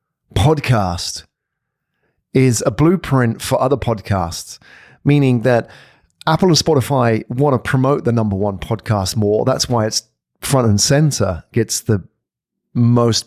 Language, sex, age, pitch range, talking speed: English, male, 40-59, 110-140 Hz, 130 wpm